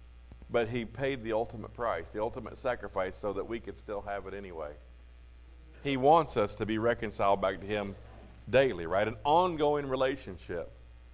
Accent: American